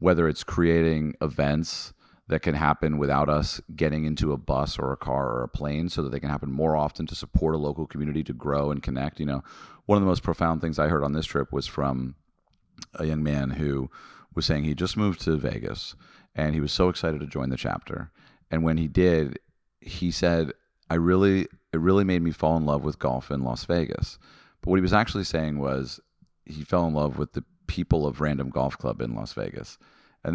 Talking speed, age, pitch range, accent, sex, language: 220 wpm, 40-59, 70-80 Hz, American, male, English